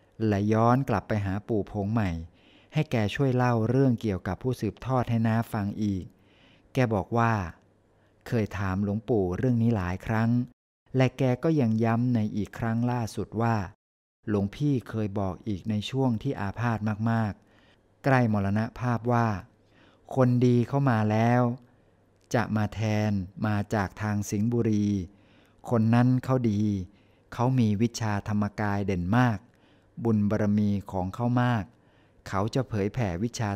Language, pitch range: Thai, 100-120 Hz